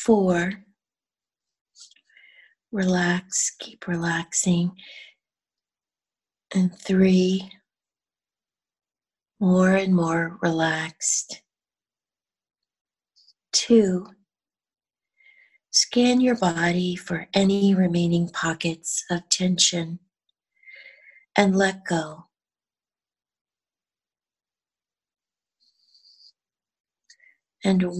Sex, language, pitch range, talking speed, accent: female, English, 170-225 Hz, 50 wpm, American